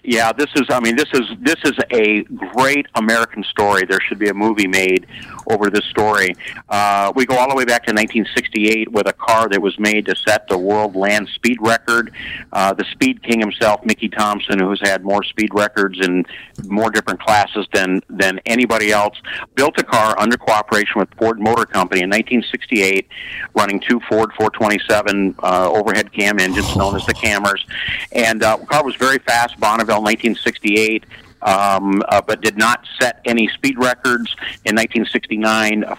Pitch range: 100-115 Hz